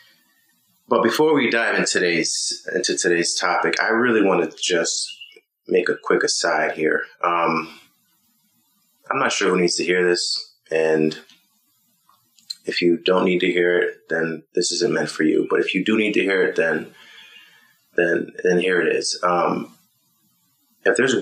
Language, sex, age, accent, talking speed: English, male, 30-49, American, 160 wpm